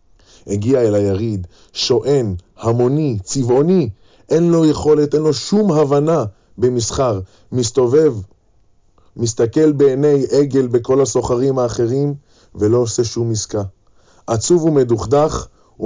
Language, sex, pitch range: Hebrew, male, 100-150 Hz